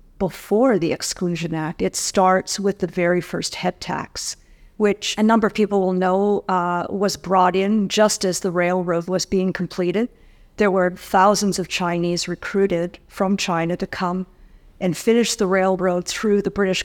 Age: 50-69